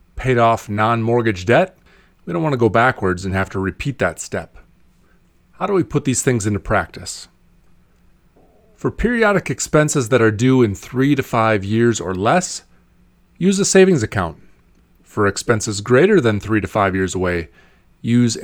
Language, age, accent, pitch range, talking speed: English, 30-49, American, 95-130 Hz, 165 wpm